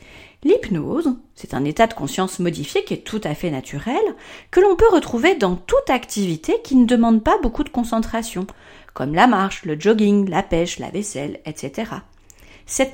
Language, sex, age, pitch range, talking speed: French, female, 40-59, 180-300 Hz, 175 wpm